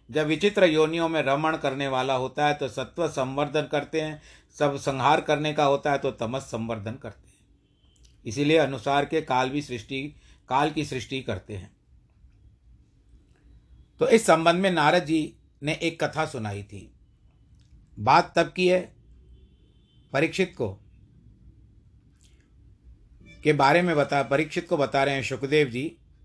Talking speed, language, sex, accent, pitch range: 145 wpm, Hindi, male, native, 110-155 Hz